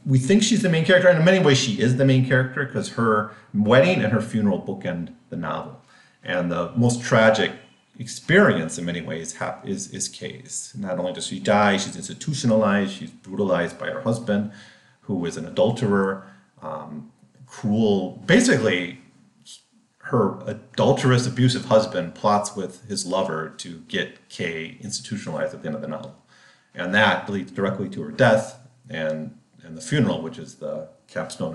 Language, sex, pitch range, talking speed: English, male, 95-135 Hz, 165 wpm